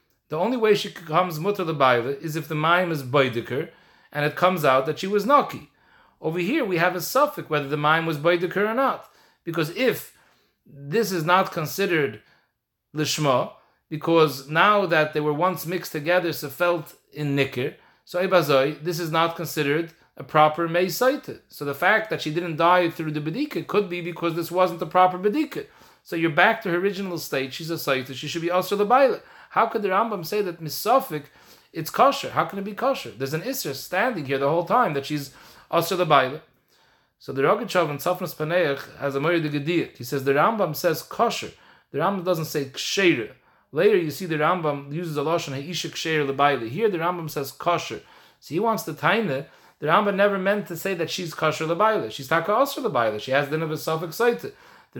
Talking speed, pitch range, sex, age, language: 195 wpm, 155-195 Hz, male, 40-59, English